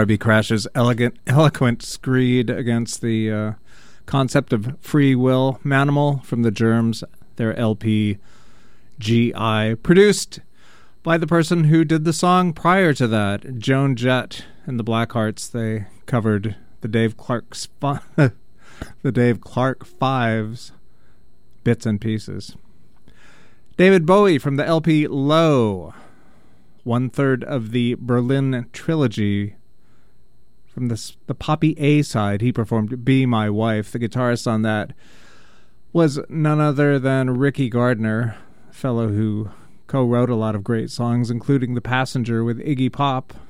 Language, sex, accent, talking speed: English, male, American, 130 wpm